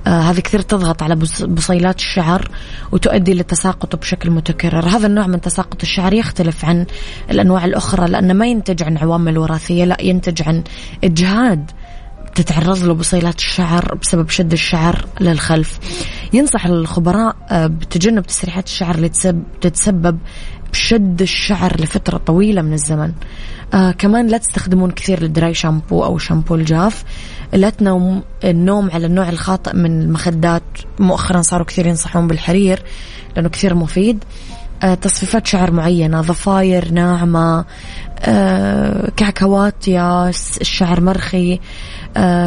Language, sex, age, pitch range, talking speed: Arabic, female, 20-39, 165-190 Hz, 125 wpm